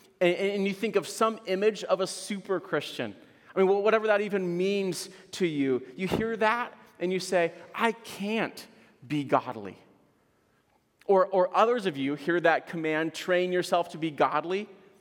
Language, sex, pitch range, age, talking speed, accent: English, male, 155-195 Hz, 30-49, 165 wpm, American